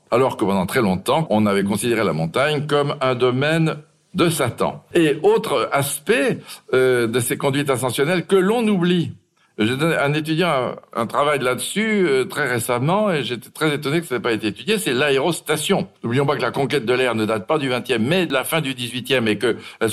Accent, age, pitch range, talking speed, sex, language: French, 60-79, 115-170 Hz, 200 wpm, male, French